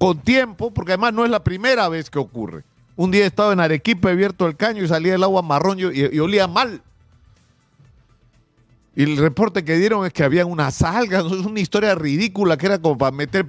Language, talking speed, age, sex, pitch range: Spanish, 220 wpm, 50-69, male, 145-220 Hz